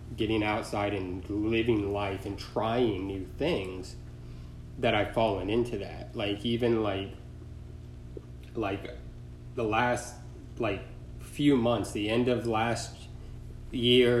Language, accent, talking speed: English, American, 120 wpm